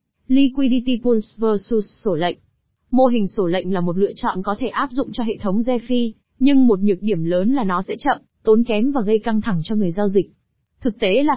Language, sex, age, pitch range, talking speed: Vietnamese, female, 20-39, 195-250 Hz, 225 wpm